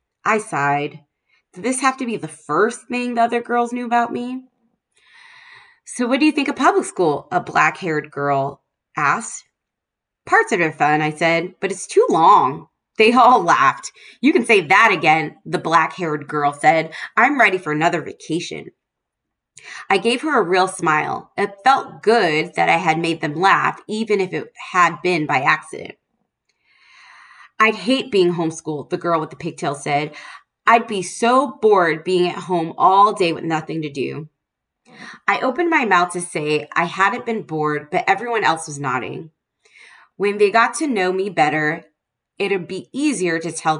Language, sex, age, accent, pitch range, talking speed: English, female, 20-39, American, 155-230 Hz, 175 wpm